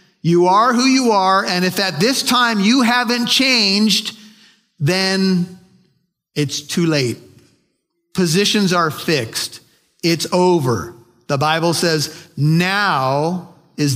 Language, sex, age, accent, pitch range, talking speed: English, male, 50-69, American, 150-210 Hz, 115 wpm